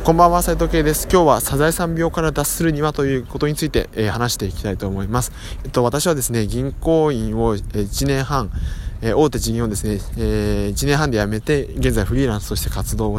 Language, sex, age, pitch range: Japanese, male, 20-39, 100-145 Hz